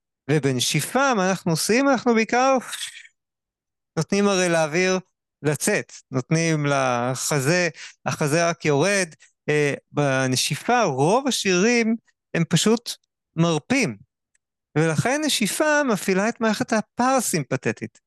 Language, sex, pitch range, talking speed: Hebrew, male, 135-185 Hz, 90 wpm